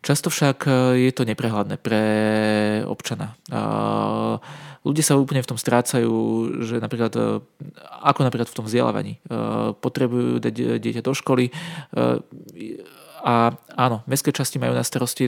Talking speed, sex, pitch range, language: 125 wpm, male, 115-135 Hz, Slovak